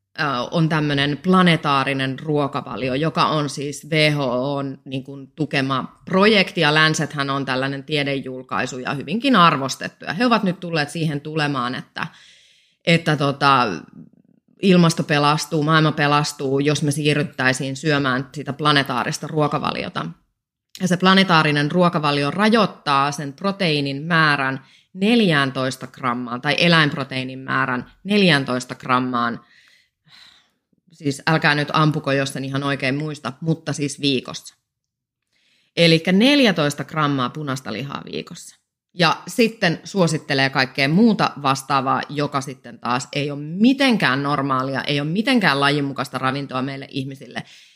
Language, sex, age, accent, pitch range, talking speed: Finnish, female, 30-49, native, 135-170 Hz, 120 wpm